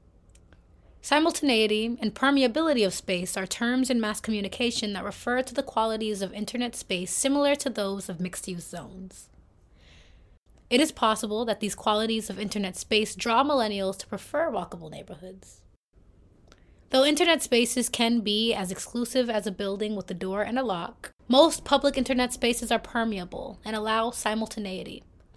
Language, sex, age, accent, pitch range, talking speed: English, female, 20-39, American, 190-240 Hz, 150 wpm